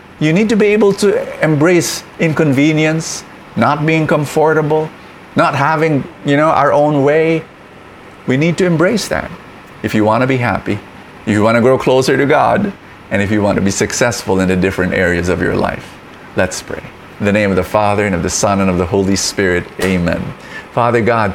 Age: 50-69